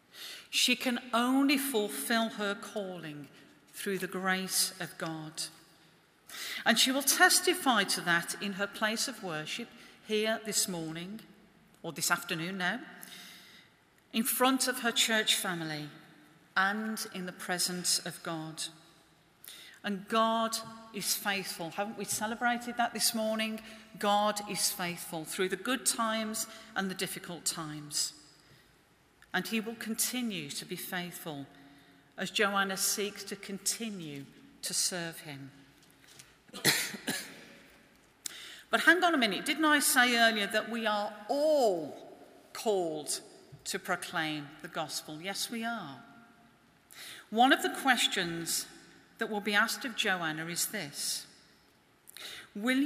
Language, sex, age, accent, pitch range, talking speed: English, female, 40-59, British, 175-230 Hz, 125 wpm